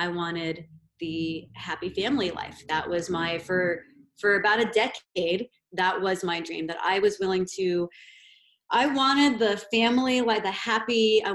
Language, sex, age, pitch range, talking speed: English, female, 30-49, 180-235 Hz, 165 wpm